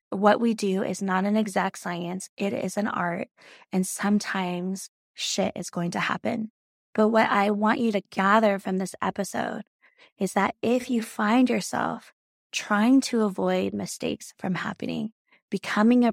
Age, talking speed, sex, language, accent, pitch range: 20-39, 160 wpm, female, English, American, 195-235 Hz